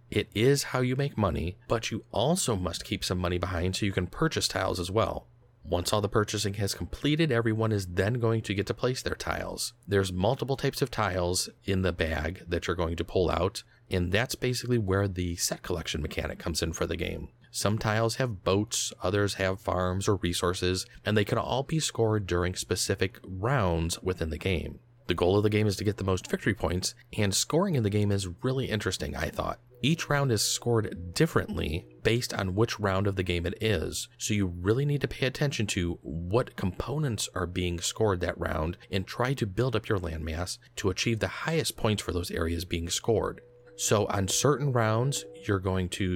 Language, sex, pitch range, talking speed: English, male, 90-115 Hz, 210 wpm